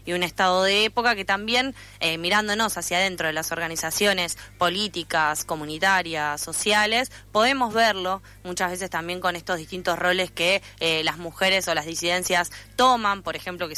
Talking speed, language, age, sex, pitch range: 160 wpm, Spanish, 20-39, female, 165-195 Hz